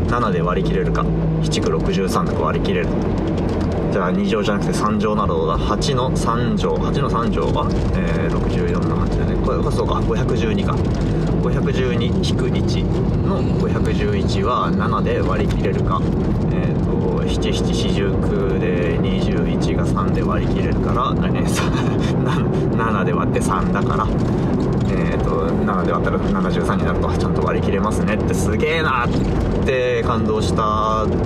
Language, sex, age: Japanese, male, 20-39